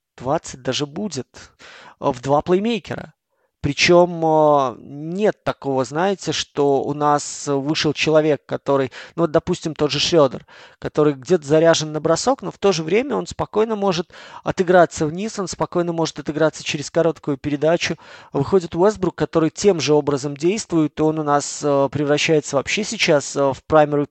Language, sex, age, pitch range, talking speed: Russian, male, 20-39, 145-170 Hz, 150 wpm